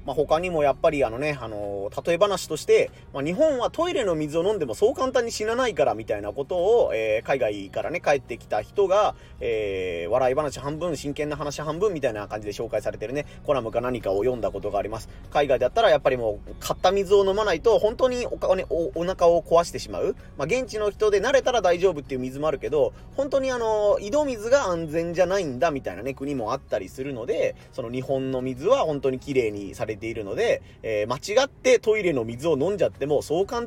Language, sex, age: Japanese, male, 30-49